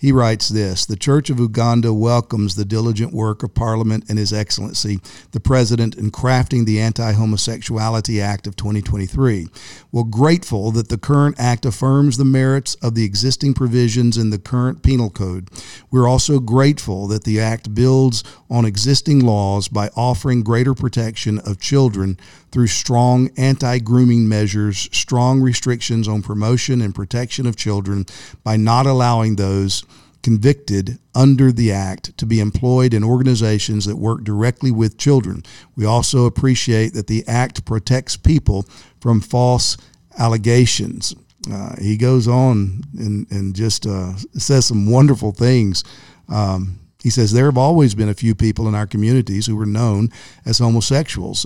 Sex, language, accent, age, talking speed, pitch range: male, English, American, 50-69, 150 wpm, 105-125 Hz